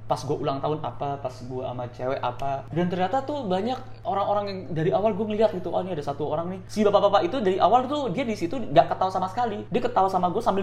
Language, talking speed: Indonesian, 245 wpm